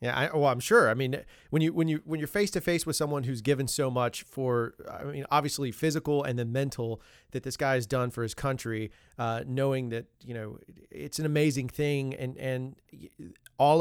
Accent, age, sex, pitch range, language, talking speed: American, 30-49, male, 120-140 Hz, English, 215 wpm